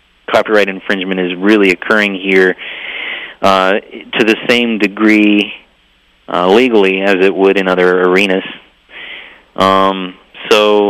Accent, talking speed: American, 115 wpm